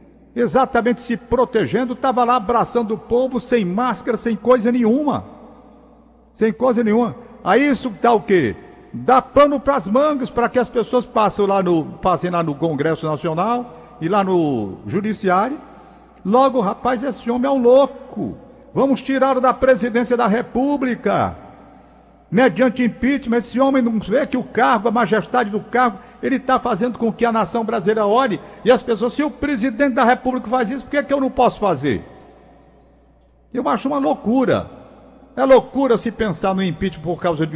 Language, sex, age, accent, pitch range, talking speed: Portuguese, male, 50-69, Brazilian, 165-250 Hz, 170 wpm